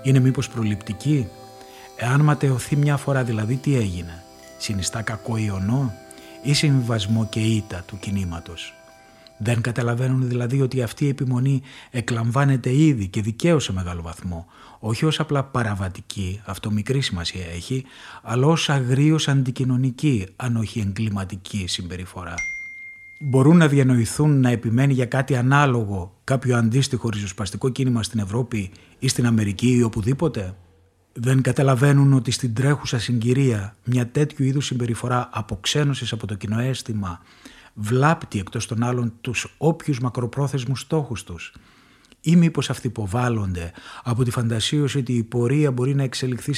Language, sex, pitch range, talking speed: Greek, male, 105-135 Hz, 135 wpm